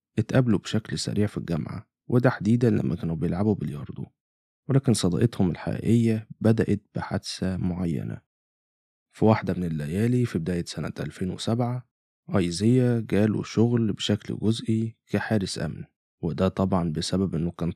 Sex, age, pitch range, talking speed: male, 20-39, 95-115 Hz, 120 wpm